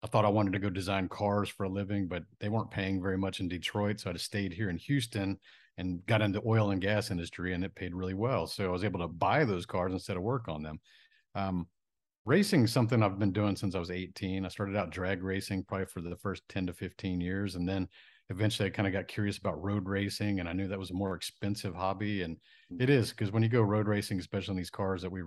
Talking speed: 260 wpm